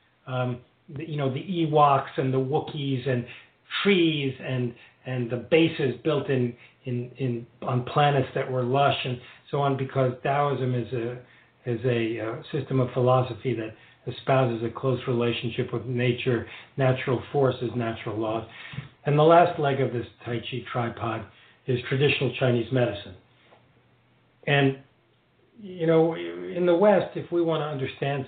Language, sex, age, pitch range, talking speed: English, male, 50-69, 120-140 Hz, 155 wpm